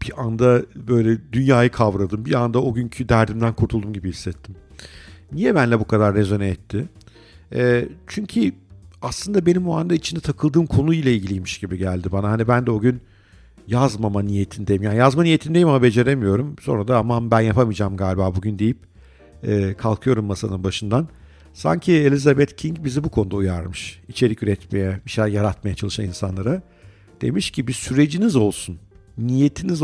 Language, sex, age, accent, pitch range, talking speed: Turkish, male, 50-69, native, 100-125 Hz, 155 wpm